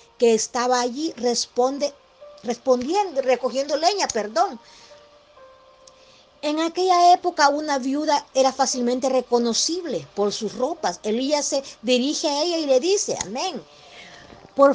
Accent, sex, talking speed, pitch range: American, female, 115 wpm, 225-290 Hz